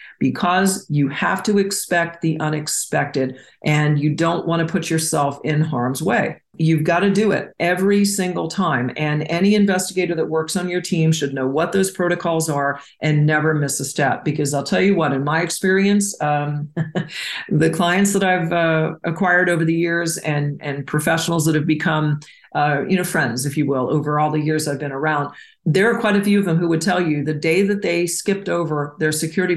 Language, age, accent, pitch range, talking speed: English, 50-69, American, 150-180 Hz, 205 wpm